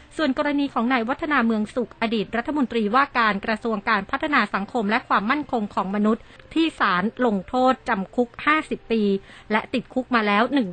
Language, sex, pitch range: Thai, female, 210-255 Hz